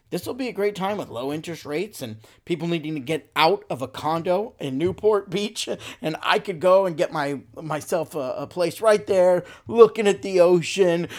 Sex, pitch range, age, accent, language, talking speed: male, 140-205 Hz, 40-59, American, English, 210 wpm